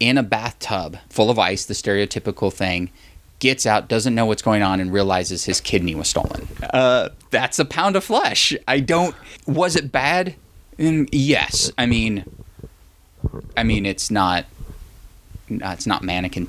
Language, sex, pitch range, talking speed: English, male, 95-140 Hz, 165 wpm